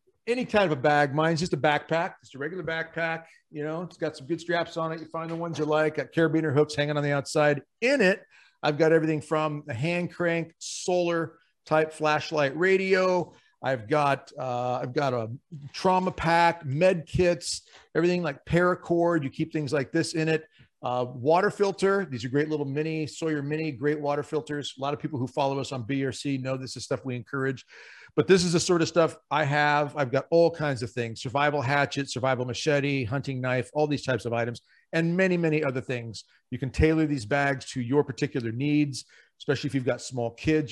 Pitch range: 130-165 Hz